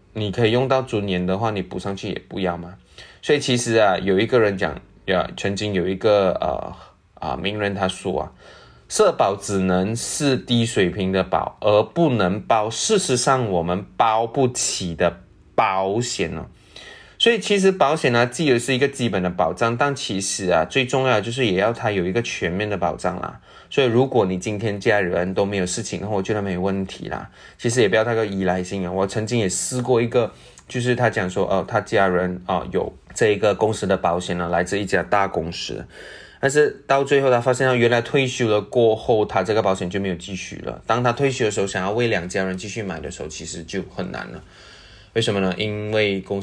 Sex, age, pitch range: male, 20-39, 90-115 Hz